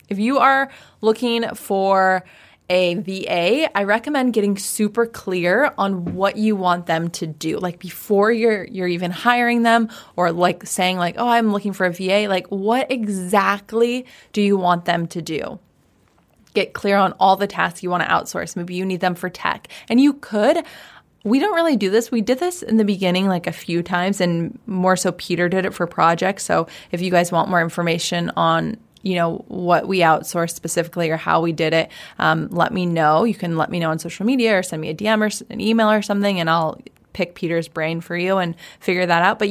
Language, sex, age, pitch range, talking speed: English, female, 20-39, 170-210 Hz, 215 wpm